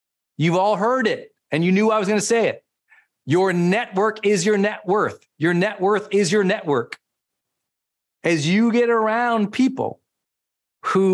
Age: 40-59